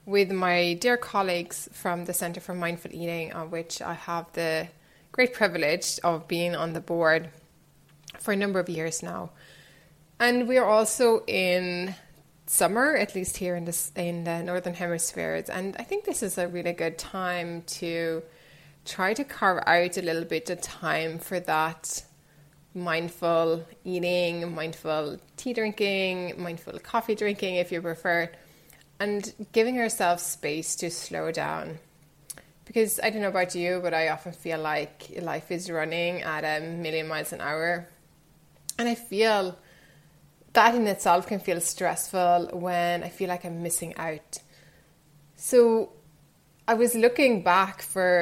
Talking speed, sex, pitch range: 155 wpm, female, 165-190 Hz